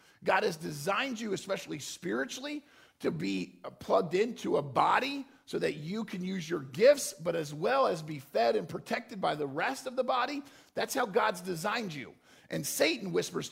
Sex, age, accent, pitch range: male, 50-69, American, 135-215 Hz